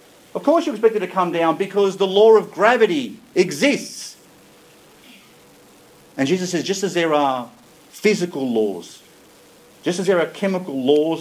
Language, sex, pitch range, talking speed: English, male, 140-195 Hz, 155 wpm